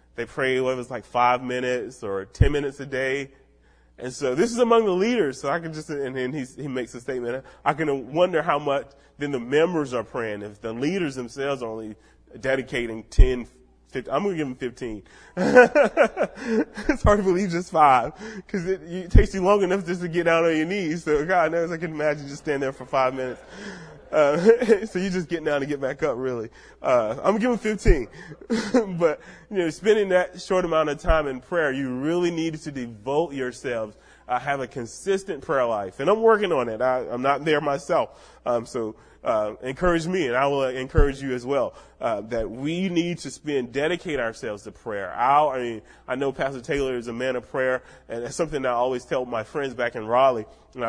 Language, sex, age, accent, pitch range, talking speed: English, male, 20-39, American, 125-175 Hz, 215 wpm